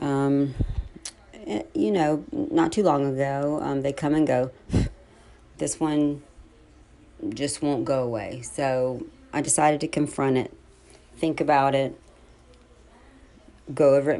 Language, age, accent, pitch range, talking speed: English, 40-59, American, 125-145 Hz, 125 wpm